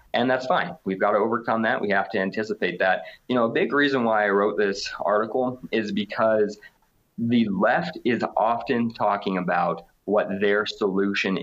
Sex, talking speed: male, 180 wpm